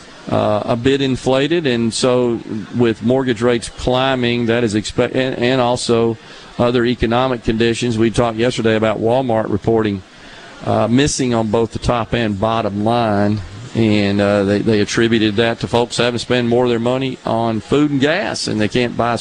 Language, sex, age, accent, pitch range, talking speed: English, male, 40-59, American, 110-125 Hz, 180 wpm